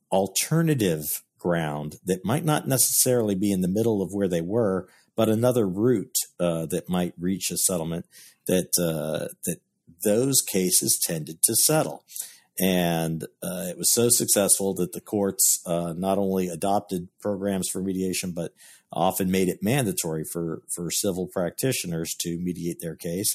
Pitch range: 90-115 Hz